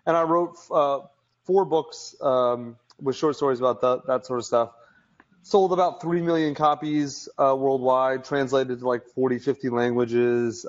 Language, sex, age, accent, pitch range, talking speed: English, male, 30-49, American, 120-150 Hz, 165 wpm